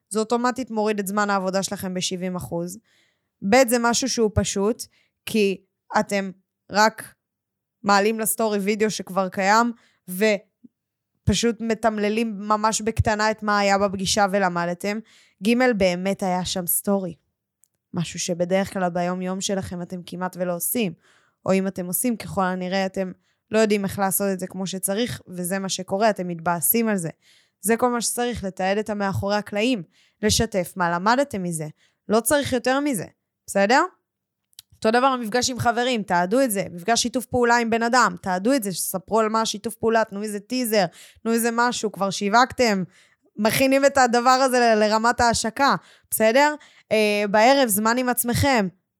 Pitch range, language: 190-235 Hz, Hebrew